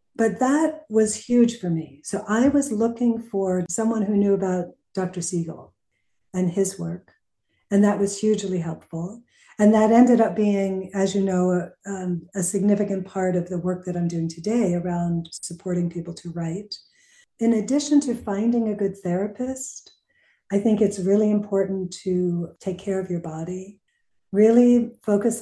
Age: 50-69